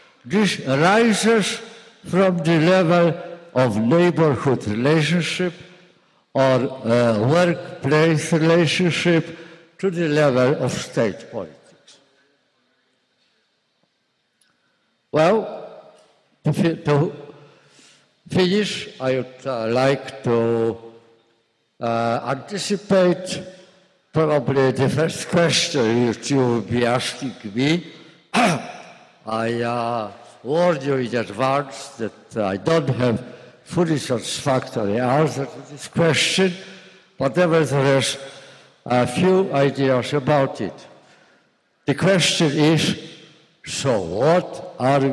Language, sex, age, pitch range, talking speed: Italian, male, 60-79, 130-175 Hz, 90 wpm